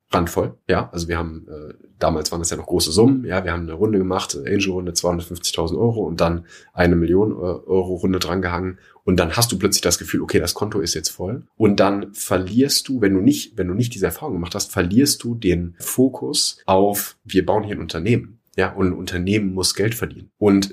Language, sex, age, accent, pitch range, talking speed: German, male, 30-49, German, 90-110 Hz, 215 wpm